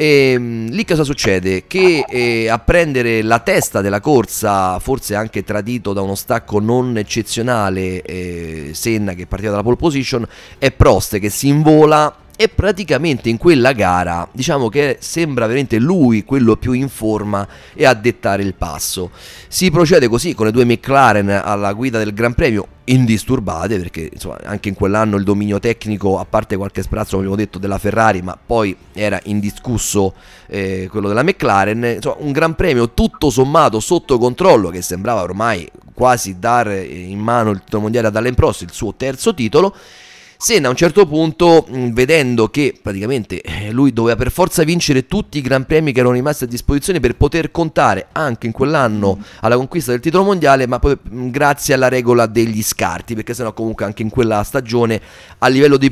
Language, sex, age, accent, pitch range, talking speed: Italian, male, 30-49, native, 100-135 Hz, 180 wpm